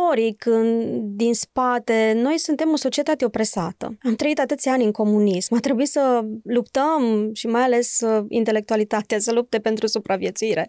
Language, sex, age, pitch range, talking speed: Romanian, female, 20-39, 215-280 Hz, 145 wpm